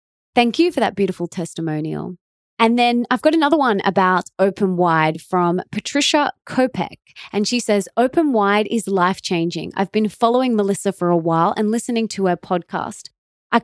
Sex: female